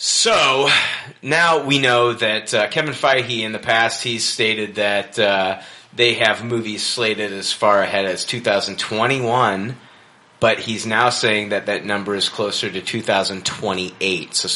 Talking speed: 145 wpm